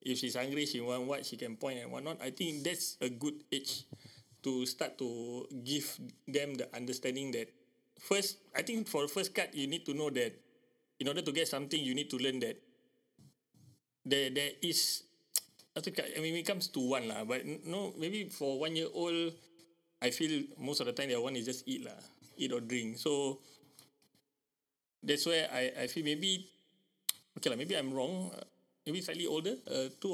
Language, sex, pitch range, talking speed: Malay, male, 125-165 Hz, 185 wpm